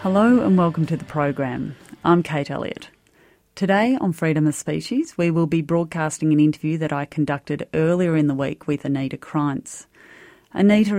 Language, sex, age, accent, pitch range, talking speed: English, female, 30-49, Australian, 150-175 Hz, 170 wpm